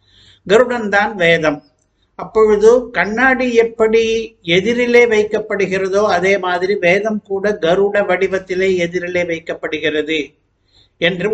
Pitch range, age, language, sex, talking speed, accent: 165-220 Hz, 60-79, Tamil, male, 85 wpm, native